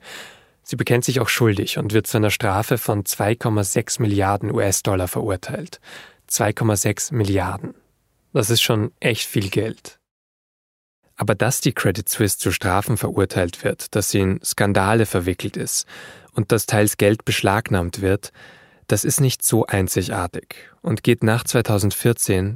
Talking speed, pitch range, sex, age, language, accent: 140 wpm, 95-120 Hz, male, 10-29, German, German